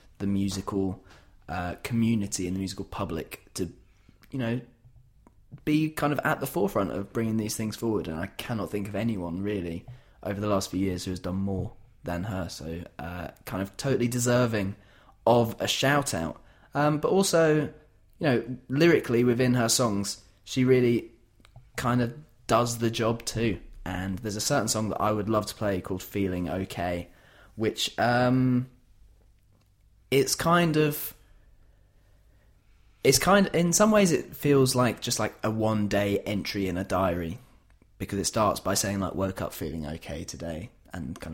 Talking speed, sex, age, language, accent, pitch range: 165 wpm, male, 20-39, English, British, 95-120 Hz